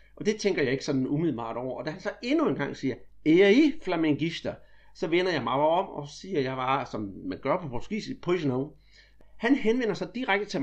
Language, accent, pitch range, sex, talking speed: Danish, native, 140-205 Hz, male, 230 wpm